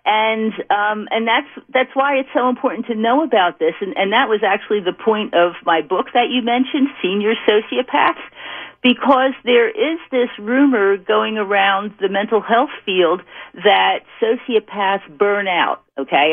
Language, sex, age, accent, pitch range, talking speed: English, female, 50-69, American, 175-240 Hz, 160 wpm